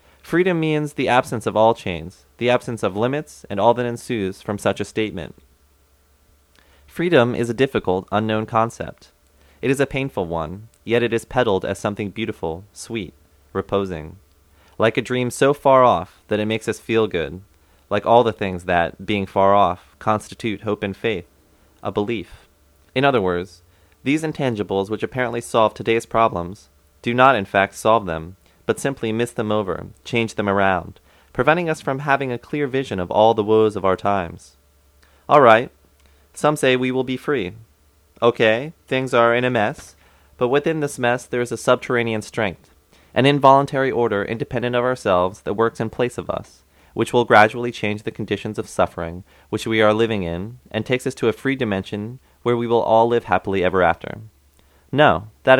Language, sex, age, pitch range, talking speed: English, male, 30-49, 90-120 Hz, 180 wpm